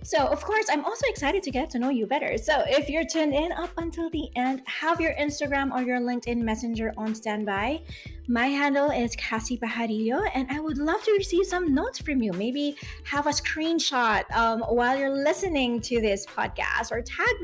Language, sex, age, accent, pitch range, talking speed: English, female, 20-39, Filipino, 215-290 Hz, 200 wpm